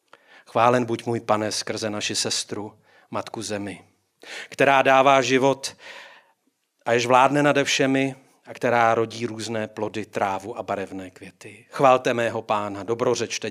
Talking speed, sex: 135 wpm, male